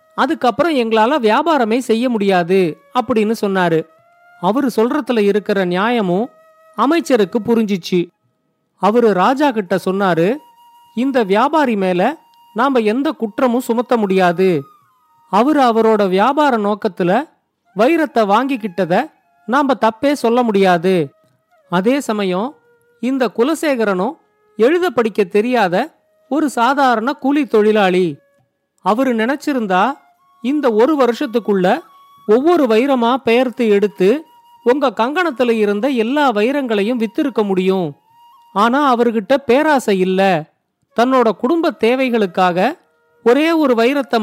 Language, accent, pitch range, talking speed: Tamil, native, 200-275 Hz, 95 wpm